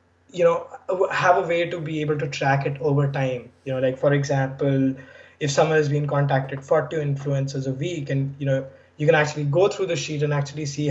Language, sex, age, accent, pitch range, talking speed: English, male, 20-39, Indian, 135-155 Hz, 220 wpm